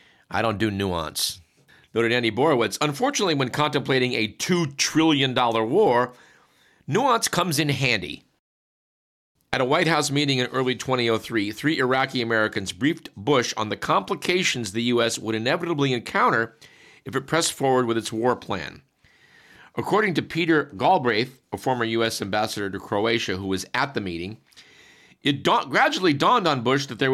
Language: English